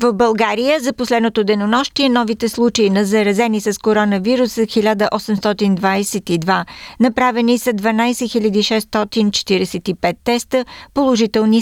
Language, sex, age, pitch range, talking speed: Bulgarian, female, 50-69, 200-235 Hz, 95 wpm